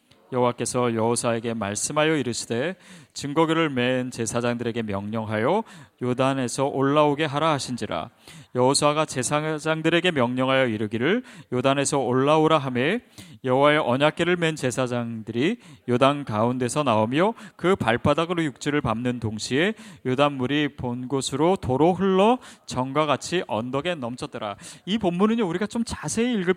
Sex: male